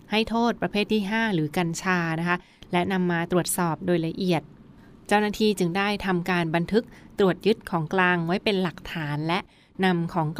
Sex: female